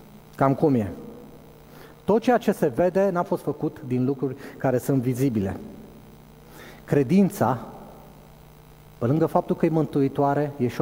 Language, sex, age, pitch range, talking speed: Romanian, male, 30-49, 140-185 Hz, 145 wpm